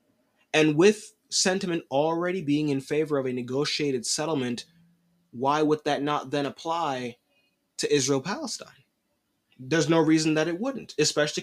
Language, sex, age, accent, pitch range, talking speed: English, male, 20-39, American, 140-175 Hz, 135 wpm